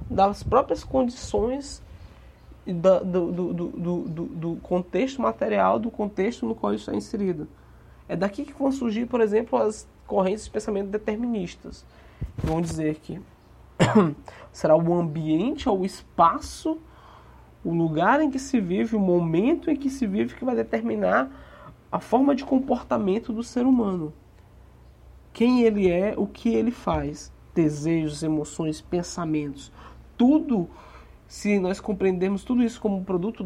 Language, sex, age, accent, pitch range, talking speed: Portuguese, male, 20-39, Brazilian, 150-215 Hz, 145 wpm